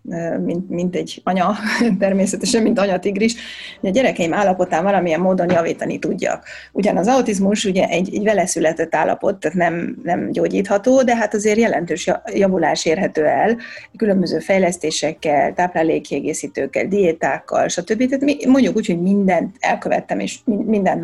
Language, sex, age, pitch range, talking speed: Hungarian, female, 30-49, 180-225 Hz, 135 wpm